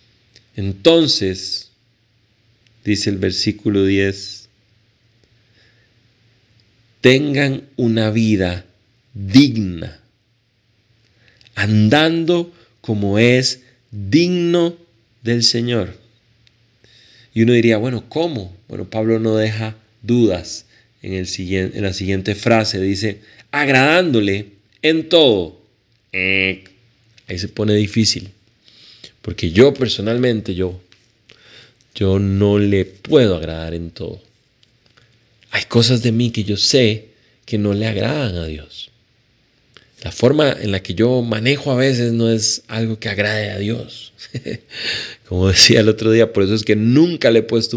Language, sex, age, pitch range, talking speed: Spanish, male, 40-59, 105-120 Hz, 115 wpm